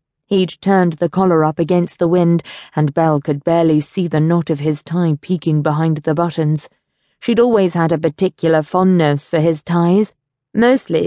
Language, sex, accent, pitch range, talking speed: English, female, British, 155-185 Hz, 175 wpm